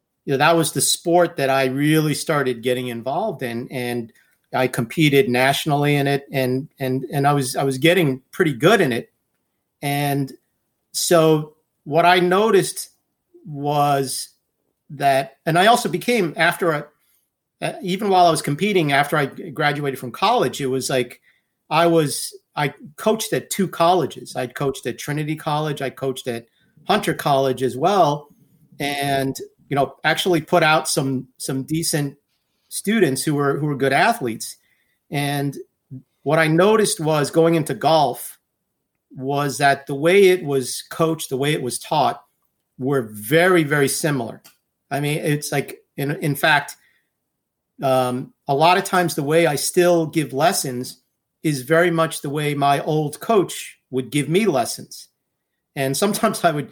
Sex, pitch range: male, 135-165 Hz